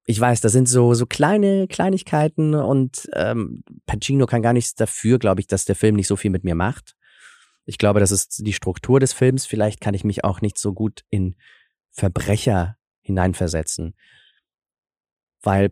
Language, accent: German, German